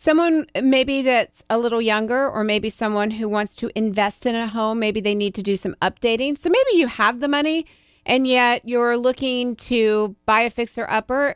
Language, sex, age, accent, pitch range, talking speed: English, female, 40-59, American, 215-255 Hz, 200 wpm